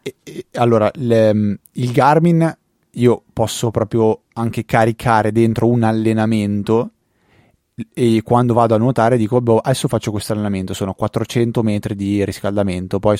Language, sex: Italian, male